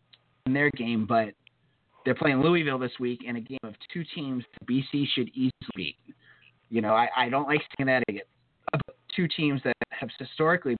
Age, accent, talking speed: 30-49, American, 185 wpm